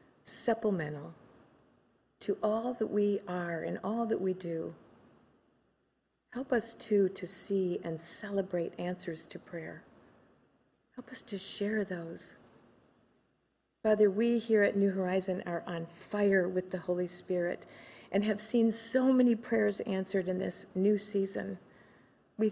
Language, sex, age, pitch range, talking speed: English, female, 50-69, 180-220 Hz, 135 wpm